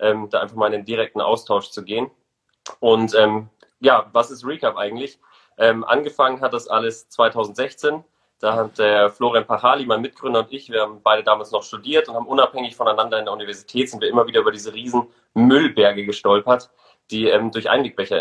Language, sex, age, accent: German, male, 30-49, German